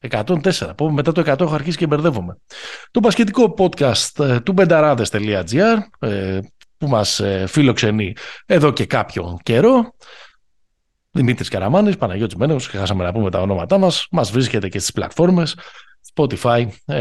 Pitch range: 100-150 Hz